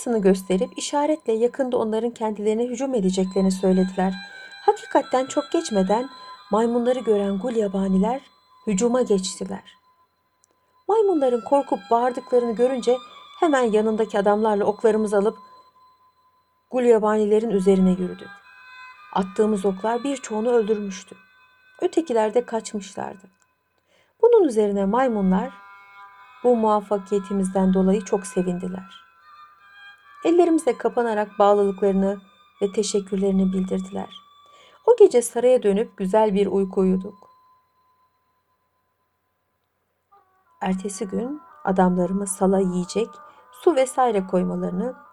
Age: 60-79